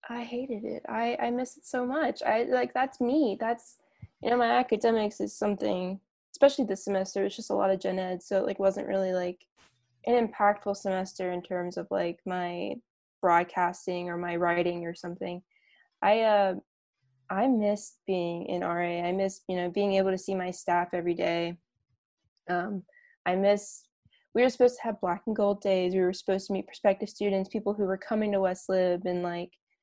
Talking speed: 195 wpm